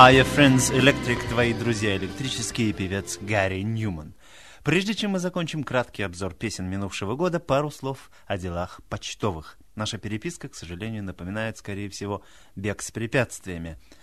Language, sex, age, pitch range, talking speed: Russian, male, 30-49, 100-140 Hz, 140 wpm